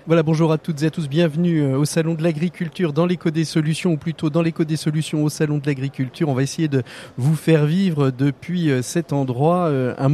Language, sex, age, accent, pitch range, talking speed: French, male, 40-59, French, 130-165 Hz, 220 wpm